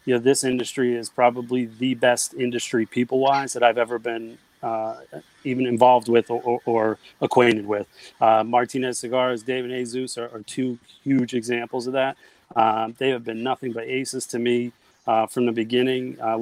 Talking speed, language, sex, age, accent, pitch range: 185 wpm, English, male, 30-49, American, 120-135 Hz